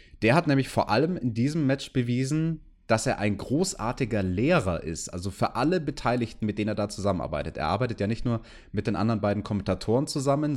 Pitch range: 95-130 Hz